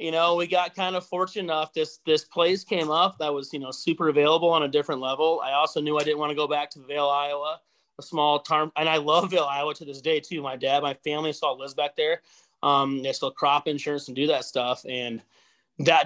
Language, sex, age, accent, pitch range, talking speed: English, male, 30-49, American, 140-170 Hz, 250 wpm